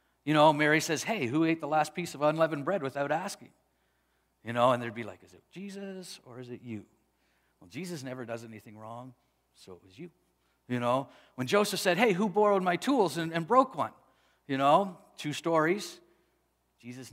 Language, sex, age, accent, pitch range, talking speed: English, male, 50-69, American, 125-195 Hz, 200 wpm